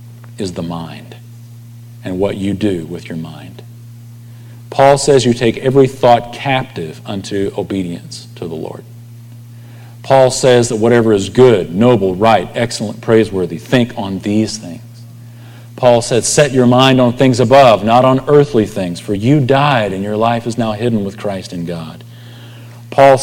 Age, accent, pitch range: 40-59, American, 110-130 Hz